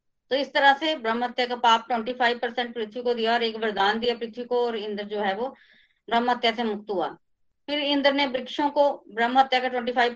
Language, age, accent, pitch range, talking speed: Hindi, 20-39, native, 230-270 Hz, 205 wpm